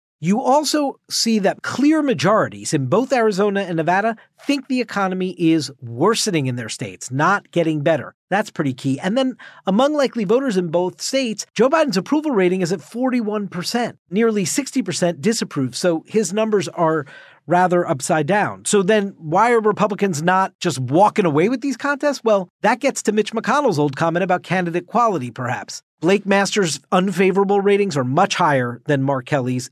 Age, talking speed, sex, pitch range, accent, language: 40-59, 175 wpm, male, 155-220 Hz, American, English